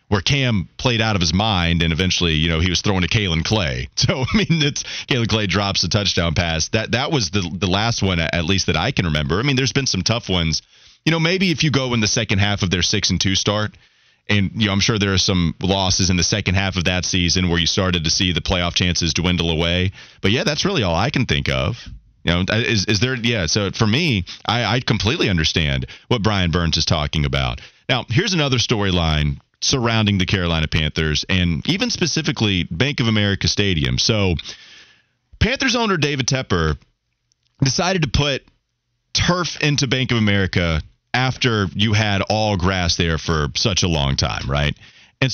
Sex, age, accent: male, 30-49, American